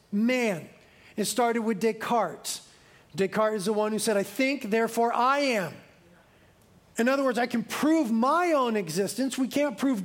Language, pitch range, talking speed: English, 200-255 Hz, 165 wpm